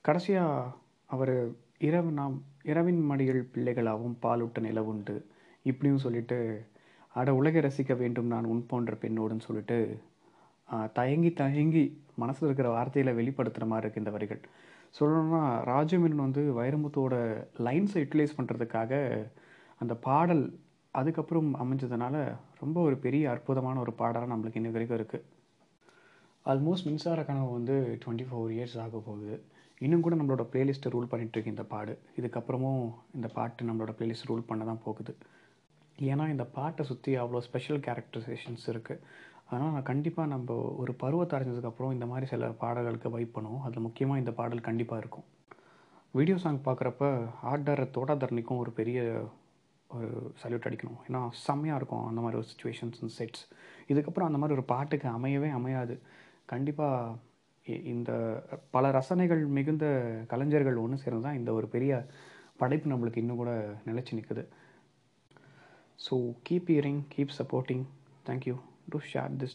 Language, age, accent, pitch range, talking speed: Tamil, 30-49, native, 115-140 Hz, 135 wpm